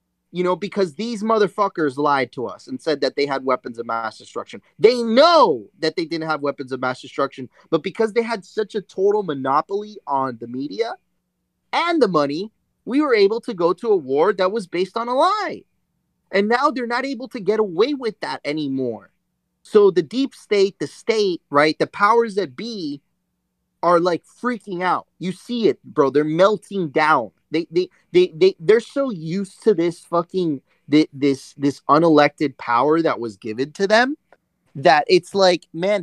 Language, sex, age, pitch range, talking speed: English, male, 30-49, 145-210 Hz, 185 wpm